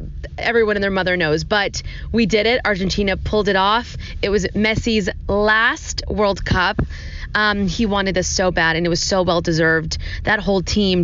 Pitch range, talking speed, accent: 160-215 Hz, 180 wpm, American